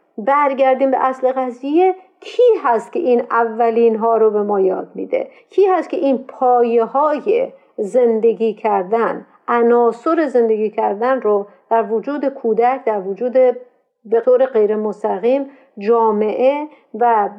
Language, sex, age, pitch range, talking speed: Persian, female, 50-69, 225-275 Hz, 130 wpm